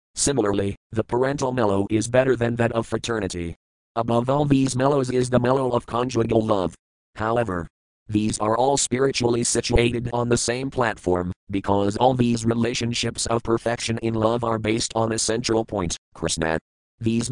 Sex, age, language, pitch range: male, 40-59, English, 100-125 Hz